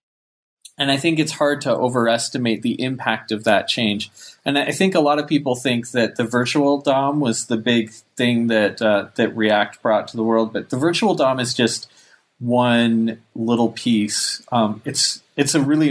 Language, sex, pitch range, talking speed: English, male, 110-125 Hz, 190 wpm